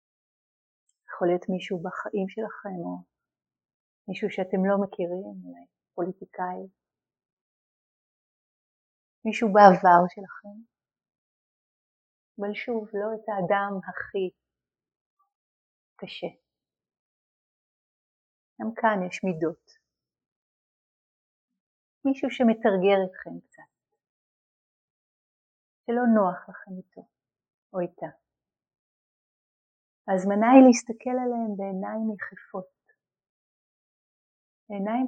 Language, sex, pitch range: Hebrew, female, 185-220 Hz